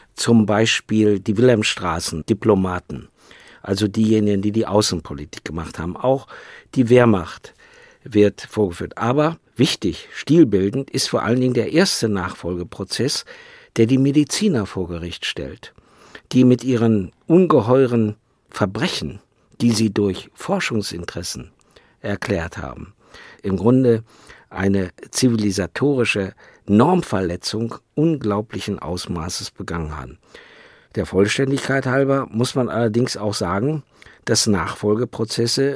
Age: 50-69